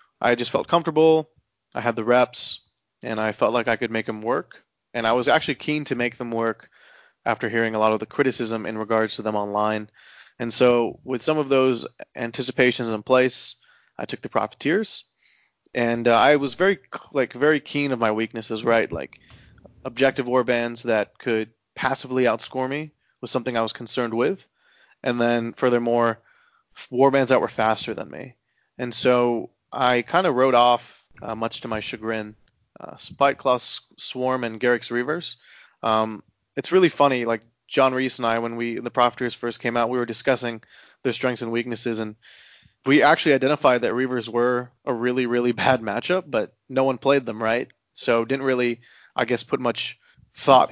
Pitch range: 115-130 Hz